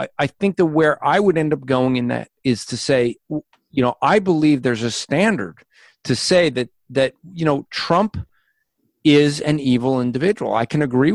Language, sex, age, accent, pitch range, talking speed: English, male, 40-59, American, 120-155 Hz, 190 wpm